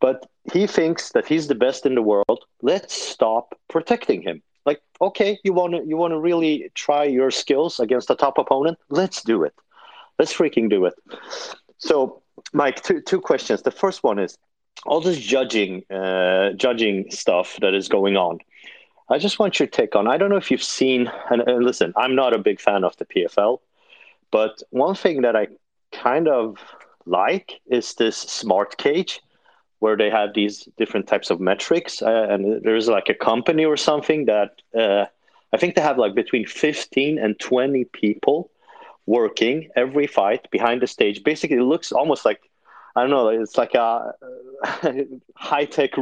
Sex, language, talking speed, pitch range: male, English, 175 wpm, 115-180 Hz